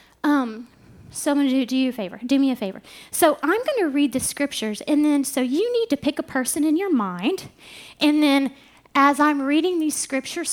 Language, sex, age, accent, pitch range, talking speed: English, female, 30-49, American, 220-285 Hz, 230 wpm